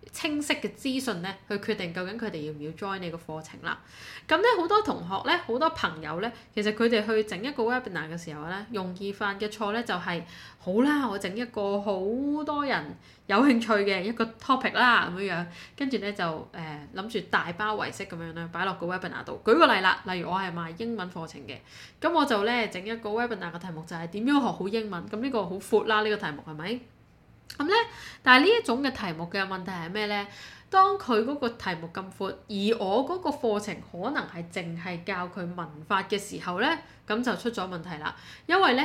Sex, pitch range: female, 180-235 Hz